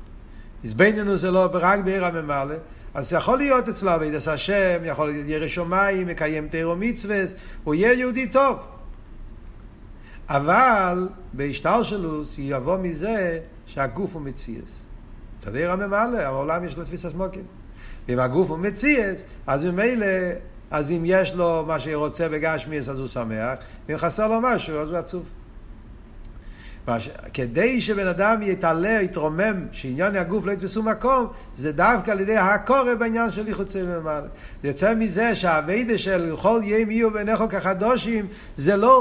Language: Hebrew